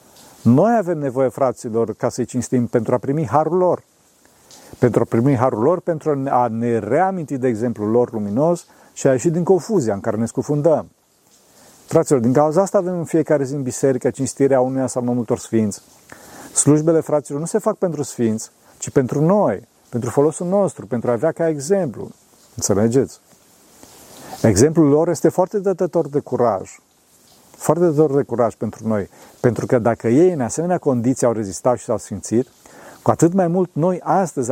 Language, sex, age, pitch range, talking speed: Romanian, male, 40-59, 120-165 Hz, 175 wpm